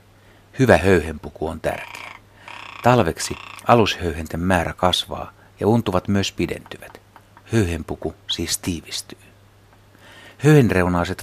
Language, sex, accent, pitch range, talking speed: Finnish, male, native, 85-105 Hz, 85 wpm